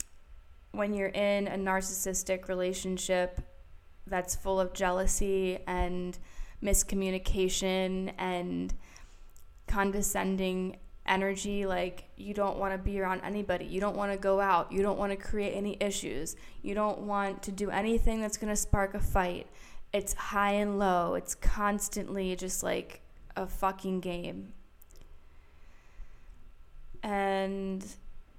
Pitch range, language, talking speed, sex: 165-195 Hz, English, 125 wpm, female